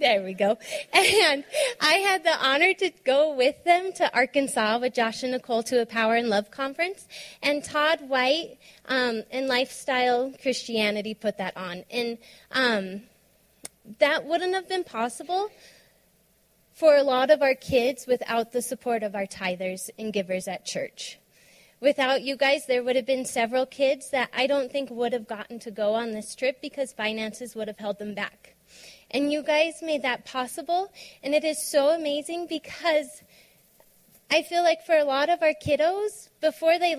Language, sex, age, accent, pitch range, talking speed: English, female, 20-39, American, 240-310 Hz, 175 wpm